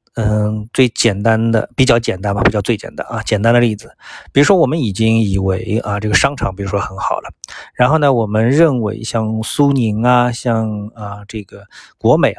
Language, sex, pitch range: Chinese, male, 110-150 Hz